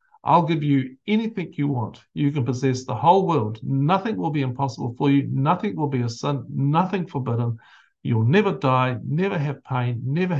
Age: 50-69